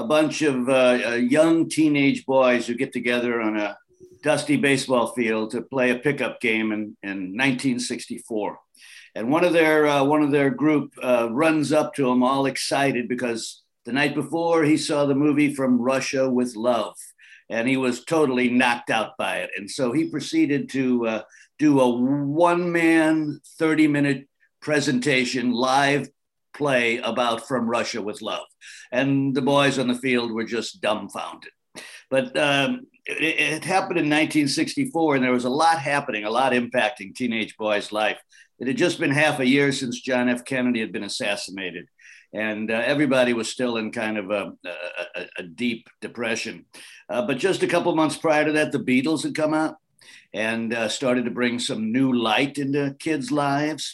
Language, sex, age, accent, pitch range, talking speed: English, male, 60-79, American, 125-150 Hz, 175 wpm